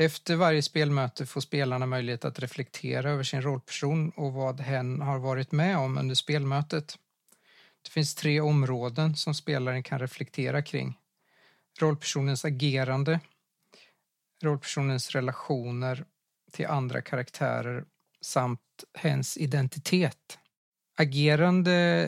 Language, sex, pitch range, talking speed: Swedish, male, 135-160 Hz, 110 wpm